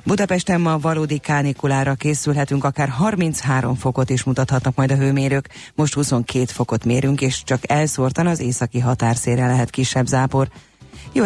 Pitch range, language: 120-140 Hz, Hungarian